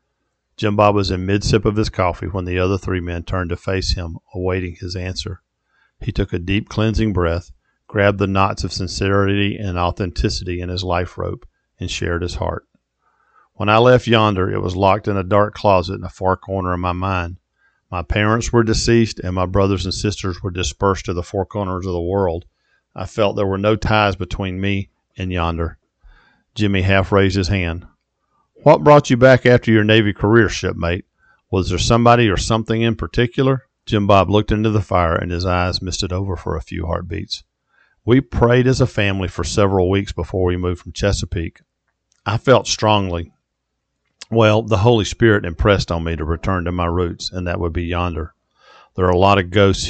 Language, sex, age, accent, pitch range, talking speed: English, male, 50-69, American, 90-105 Hz, 195 wpm